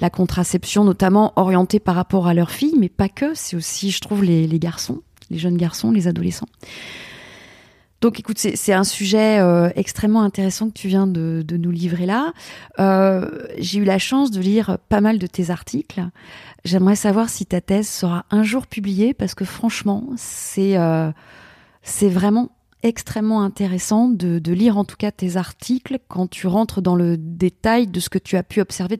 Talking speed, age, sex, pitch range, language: 190 wpm, 30-49, female, 185-220 Hz, French